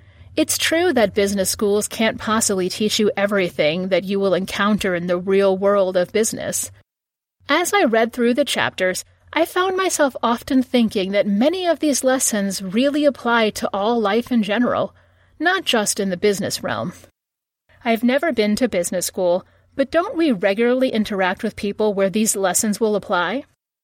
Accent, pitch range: American, 200-260 Hz